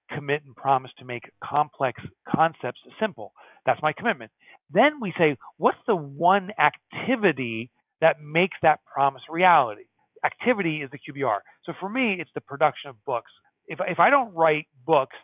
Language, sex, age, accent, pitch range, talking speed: English, male, 40-59, American, 135-185 Hz, 160 wpm